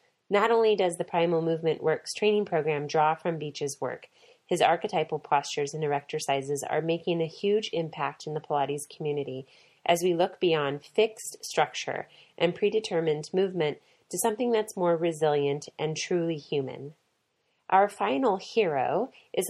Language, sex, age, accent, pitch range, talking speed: English, female, 30-49, American, 155-200 Hz, 150 wpm